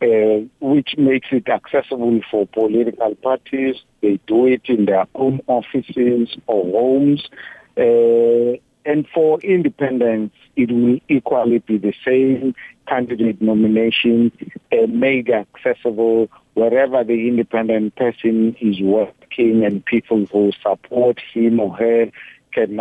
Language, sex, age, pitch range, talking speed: English, male, 50-69, 110-125 Hz, 120 wpm